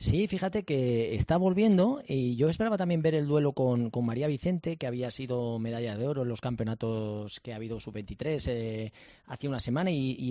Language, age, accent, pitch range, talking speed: Spanish, 30-49, Spanish, 115-150 Hz, 205 wpm